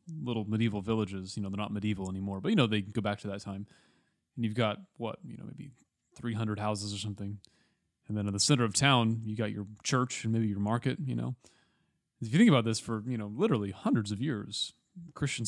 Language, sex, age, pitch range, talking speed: English, male, 30-49, 105-125 Hz, 230 wpm